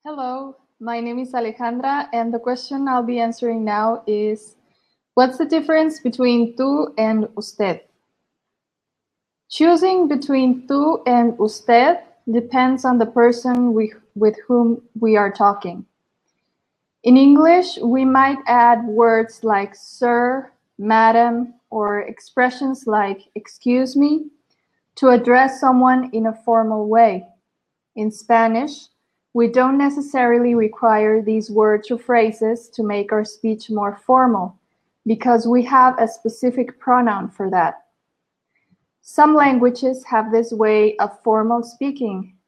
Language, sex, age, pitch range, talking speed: English, female, 20-39, 220-255 Hz, 125 wpm